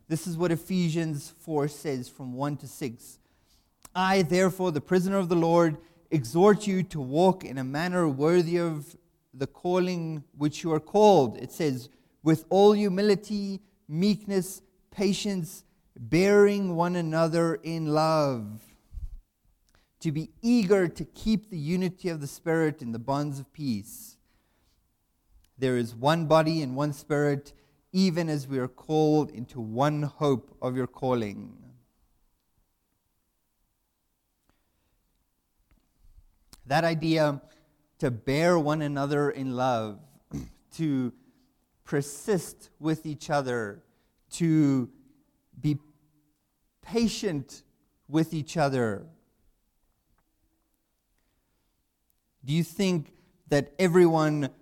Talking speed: 110 wpm